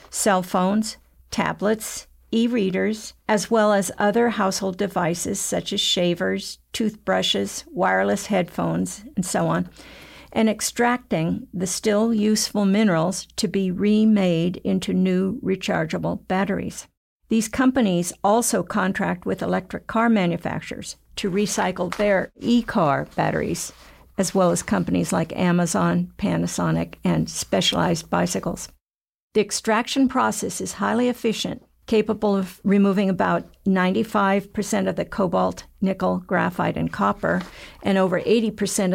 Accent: American